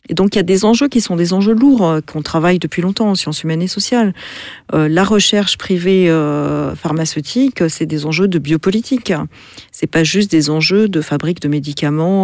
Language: French